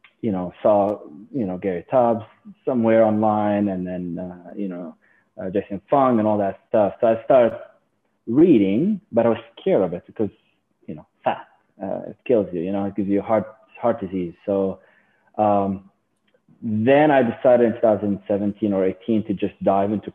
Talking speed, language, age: 180 wpm, English, 20-39